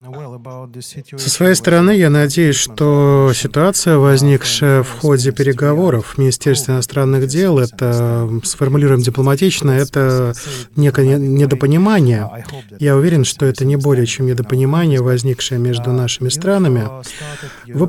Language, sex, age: Russian, male, 20-39